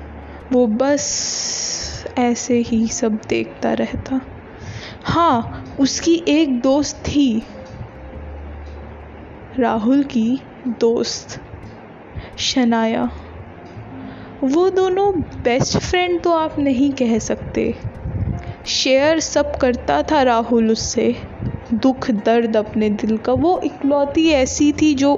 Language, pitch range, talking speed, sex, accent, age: Hindi, 225-275 Hz, 100 wpm, female, native, 10-29